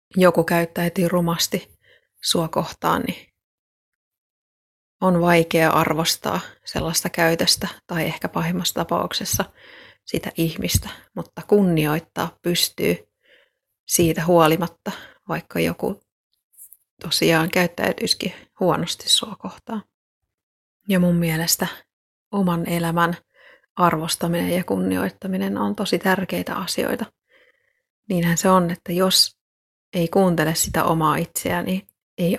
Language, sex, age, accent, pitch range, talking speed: Finnish, female, 30-49, native, 160-185 Hz, 95 wpm